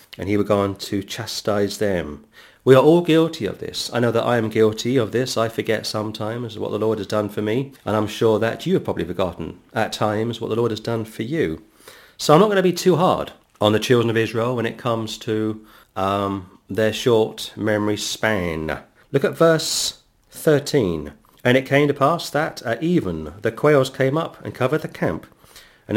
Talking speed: 210 wpm